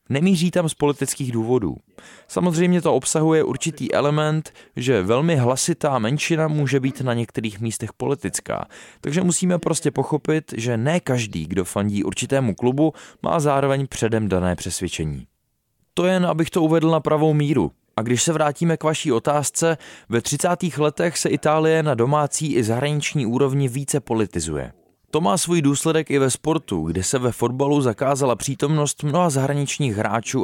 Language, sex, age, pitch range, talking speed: Czech, male, 20-39, 115-160 Hz, 155 wpm